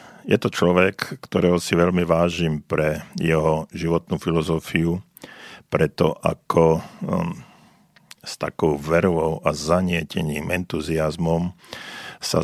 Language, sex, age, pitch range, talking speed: Slovak, male, 50-69, 80-90 Hz, 95 wpm